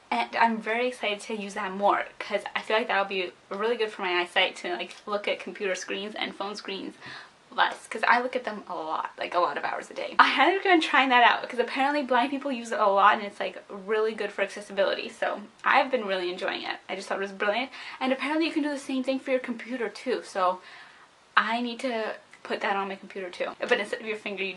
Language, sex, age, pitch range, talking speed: English, female, 10-29, 205-275 Hz, 255 wpm